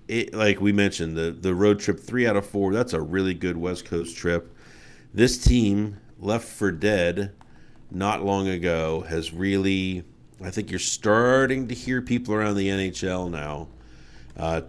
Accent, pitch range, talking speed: American, 85-105 Hz, 170 wpm